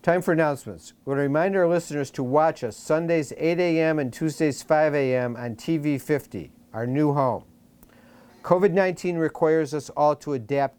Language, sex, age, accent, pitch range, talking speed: English, male, 50-69, American, 130-160 Hz, 165 wpm